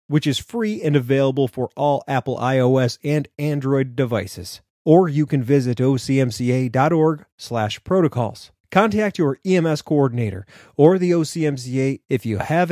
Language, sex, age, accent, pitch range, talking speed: English, male, 30-49, American, 120-155 Hz, 130 wpm